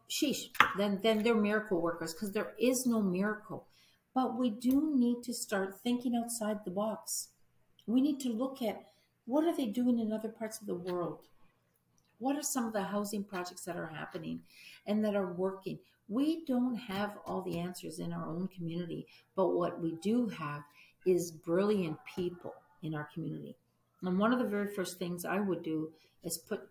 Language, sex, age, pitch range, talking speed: English, female, 50-69, 170-230 Hz, 185 wpm